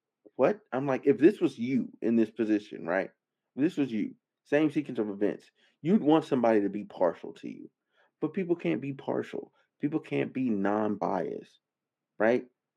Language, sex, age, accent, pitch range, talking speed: English, male, 30-49, American, 110-150 Hz, 175 wpm